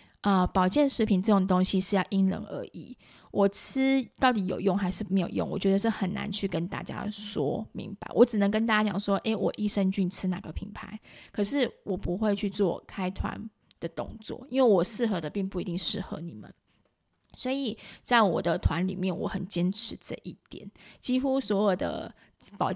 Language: Chinese